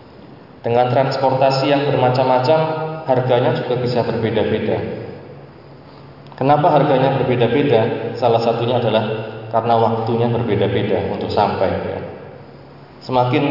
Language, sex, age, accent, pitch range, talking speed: Indonesian, male, 20-39, native, 115-135 Hz, 90 wpm